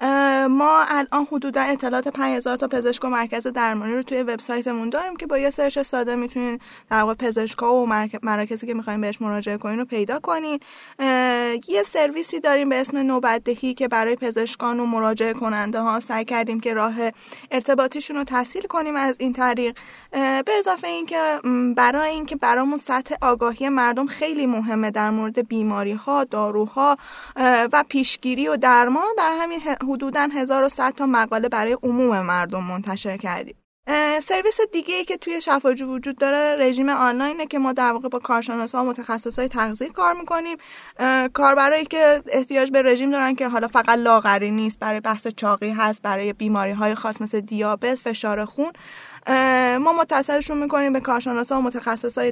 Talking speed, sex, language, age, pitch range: 170 wpm, female, Persian, 10-29, 230-280 Hz